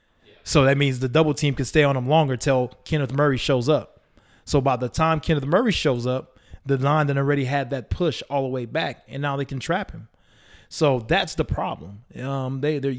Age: 20-39